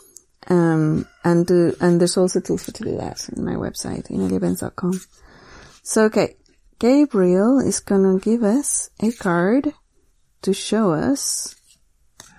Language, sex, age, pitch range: English, female, 30-49, 190-235 Hz